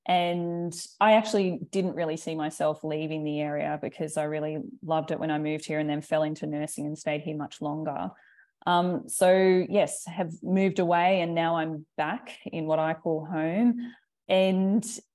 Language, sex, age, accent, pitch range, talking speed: English, female, 20-39, Australian, 155-175 Hz, 180 wpm